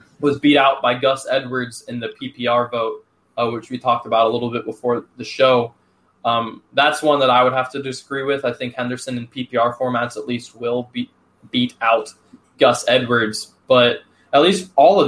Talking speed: 200 wpm